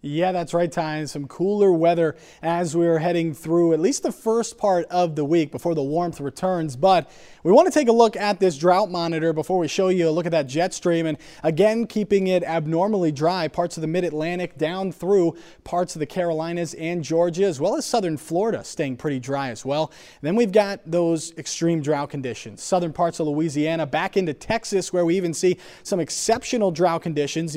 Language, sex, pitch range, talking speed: English, male, 155-185 Hz, 210 wpm